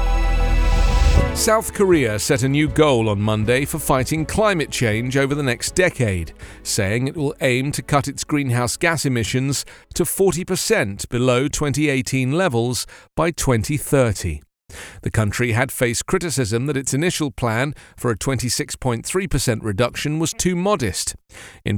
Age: 40-59